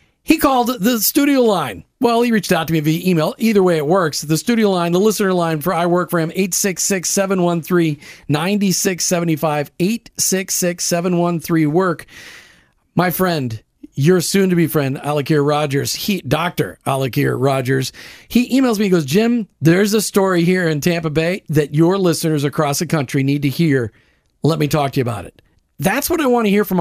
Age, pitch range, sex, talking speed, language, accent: 40-59, 160-205 Hz, male, 170 wpm, English, American